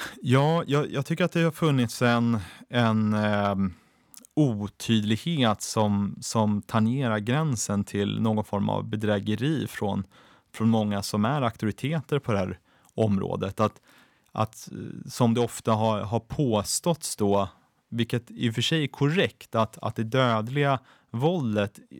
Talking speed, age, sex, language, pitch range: 140 wpm, 30-49, male, Swedish, 105-135 Hz